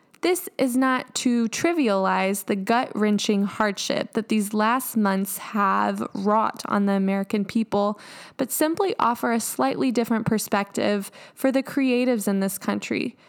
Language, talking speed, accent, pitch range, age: English, 140 wpm, American, 205-245 Hz, 10-29